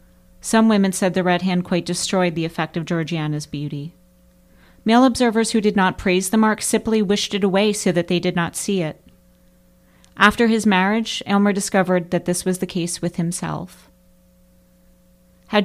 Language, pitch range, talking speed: English, 145-200 Hz, 175 wpm